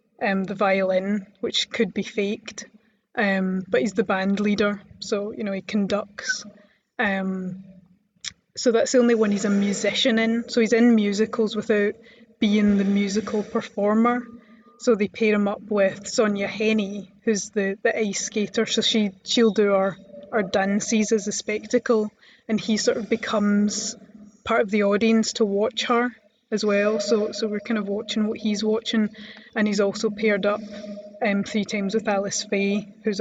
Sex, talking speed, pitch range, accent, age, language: female, 170 wpm, 205-220 Hz, British, 20-39, English